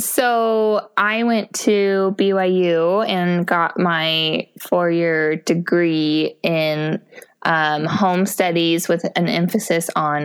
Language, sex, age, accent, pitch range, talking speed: English, female, 20-39, American, 160-200 Hz, 105 wpm